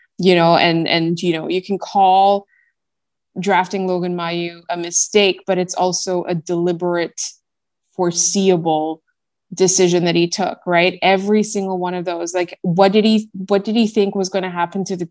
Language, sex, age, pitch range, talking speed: English, female, 20-39, 175-200 Hz, 175 wpm